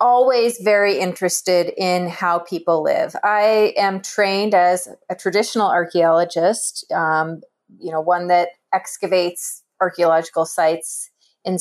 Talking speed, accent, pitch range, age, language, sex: 120 wpm, American, 170-205 Hz, 30-49, English, female